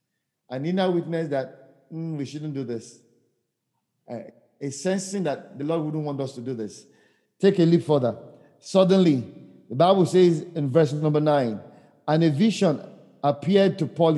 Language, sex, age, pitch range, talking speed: English, male, 50-69, 145-180 Hz, 170 wpm